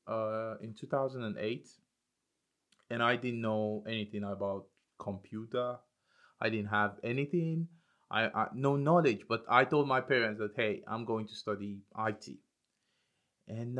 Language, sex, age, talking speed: English, male, 30-49, 135 wpm